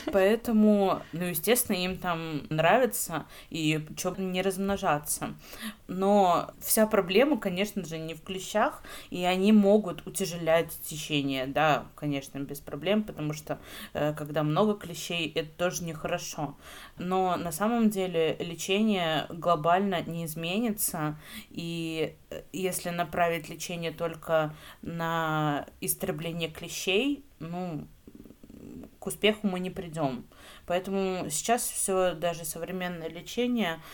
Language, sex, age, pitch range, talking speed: Russian, female, 20-39, 160-195 Hz, 110 wpm